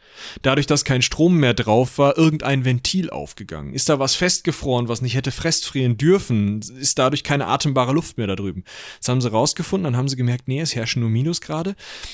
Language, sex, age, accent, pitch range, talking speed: German, male, 30-49, German, 120-155 Hz, 205 wpm